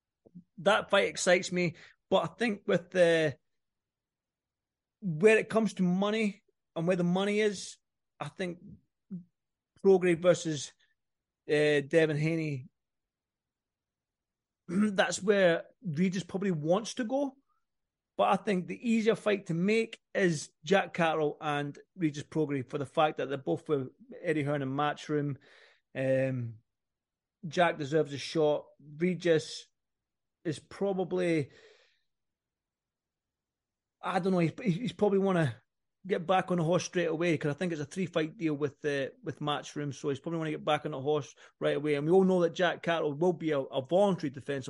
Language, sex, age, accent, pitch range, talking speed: English, male, 30-49, British, 150-190 Hz, 160 wpm